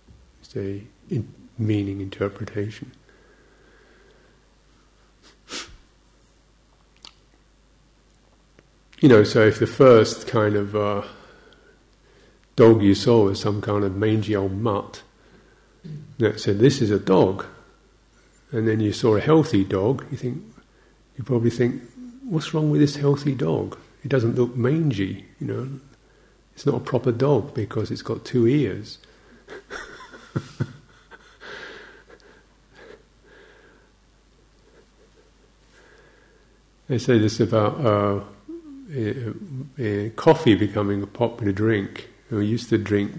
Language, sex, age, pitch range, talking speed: English, male, 50-69, 100-135 Hz, 110 wpm